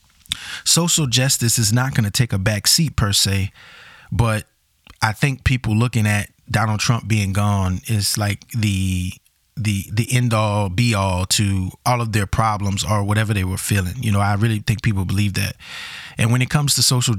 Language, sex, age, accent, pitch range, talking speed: English, male, 20-39, American, 105-130 Hz, 190 wpm